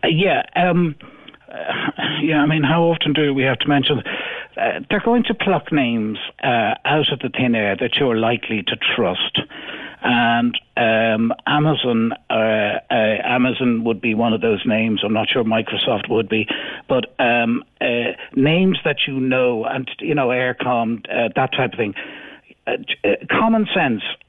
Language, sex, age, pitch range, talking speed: English, male, 60-79, 110-145 Hz, 165 wpm